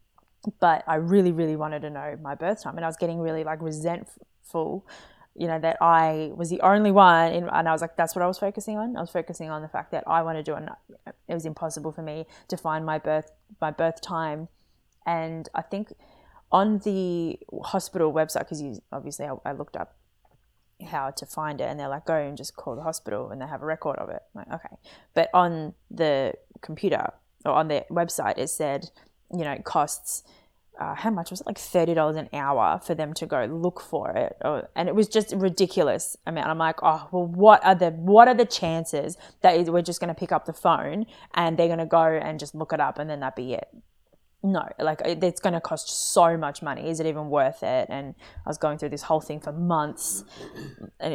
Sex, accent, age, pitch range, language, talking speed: female, Australian, 20-39, 155-180 Hz, English, 230 wpm